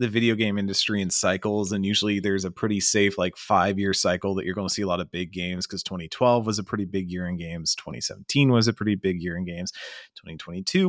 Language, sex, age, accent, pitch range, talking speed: English, male, 30-49, American, 90-115 Hz, 240 wpm